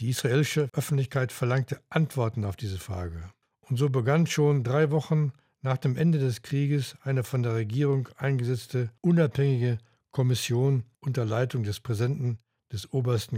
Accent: German